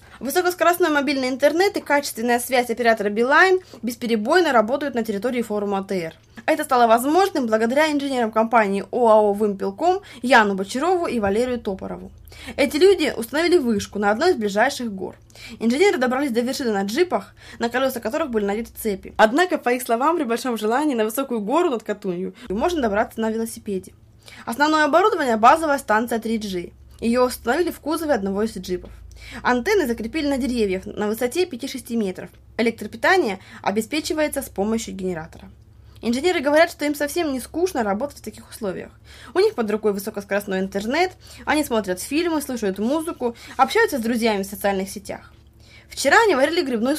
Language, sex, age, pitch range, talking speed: Russian, female, 20-39, 210-290 Hz, 155 wpm